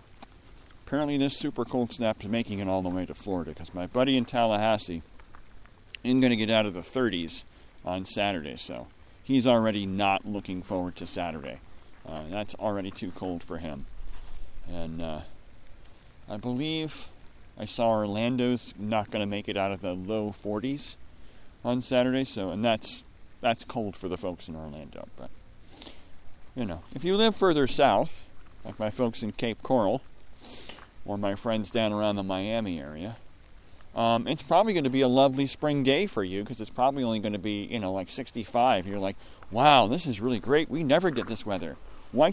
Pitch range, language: 95-125 Hz, English